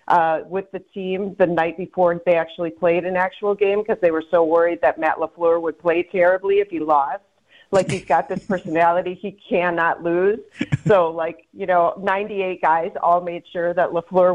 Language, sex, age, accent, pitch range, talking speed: English, female, 40-59, American, 170-210 Hz, 190 wpm